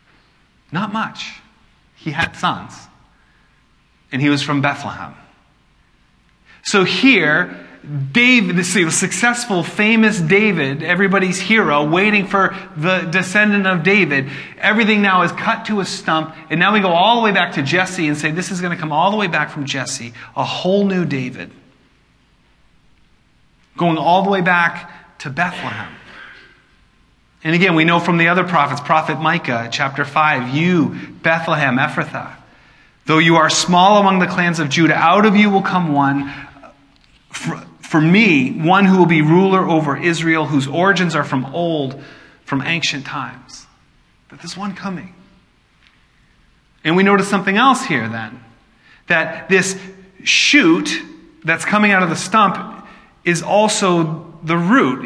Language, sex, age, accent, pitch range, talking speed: English, male, 30-49, American, 150-195 Hz, 150 wpm